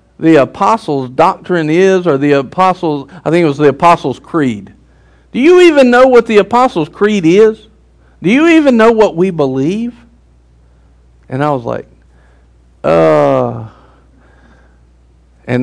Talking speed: 140 wpm